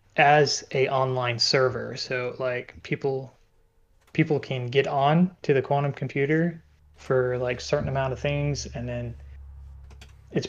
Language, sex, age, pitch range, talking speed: English, male, 20-39, 125-145 Hz, 135 wpm